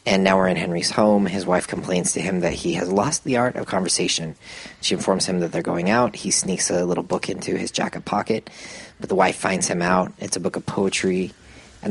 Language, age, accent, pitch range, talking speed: English, 30-49, American, 90-105 Hz, 235 wpm